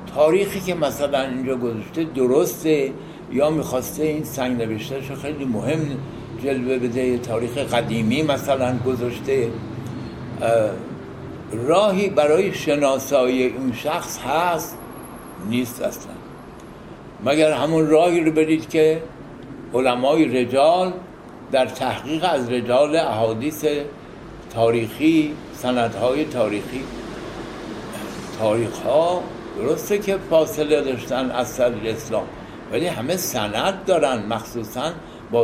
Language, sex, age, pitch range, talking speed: English, male, 60-79, 125-165 Hz, 100 wpm